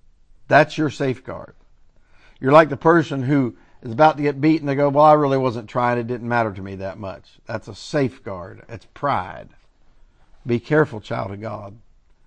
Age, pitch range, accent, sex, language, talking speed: 50-69, 115-155 Hz, American, male, English, 180 wpm